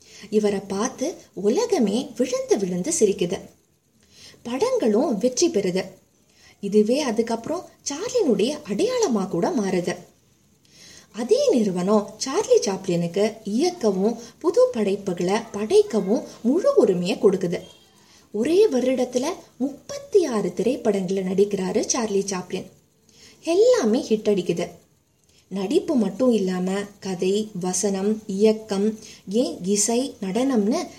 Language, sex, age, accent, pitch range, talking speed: Tamil, female, 20-39, native, 195-275 Hz, 70 wpm